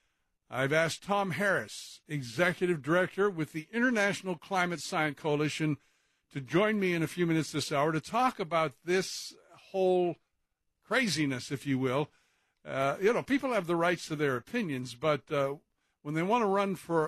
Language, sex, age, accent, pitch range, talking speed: English, male, 60-79, American, 145-190 Hz, 170 wpm